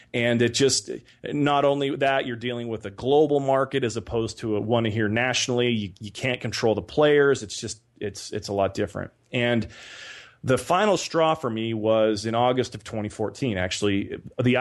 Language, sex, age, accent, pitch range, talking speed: English, male, 30-49, American, 110-130 Hz, 185 wpm